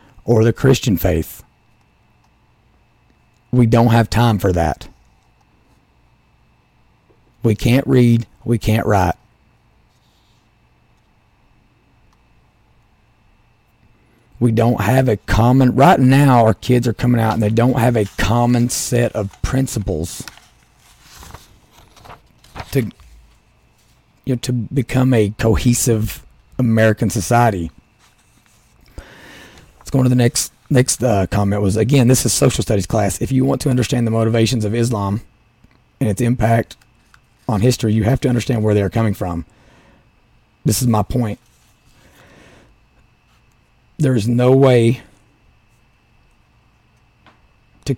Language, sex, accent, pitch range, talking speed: English, male, American, 105-125 Hz, 115 wpm